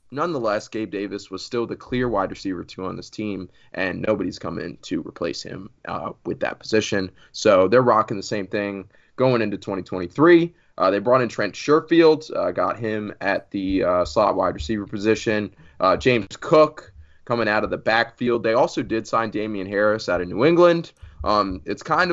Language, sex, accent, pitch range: English, male, American, 95-120 Hz